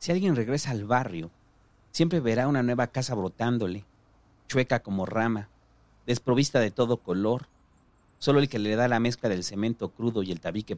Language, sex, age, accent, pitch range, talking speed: Spanish, male, 40-59, Mexican, 100-125 Hz, 175 wpm